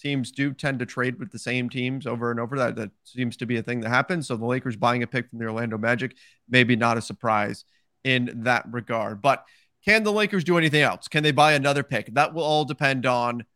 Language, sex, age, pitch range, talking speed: English, male, 30-49, 120-150 Hz, 245 wpm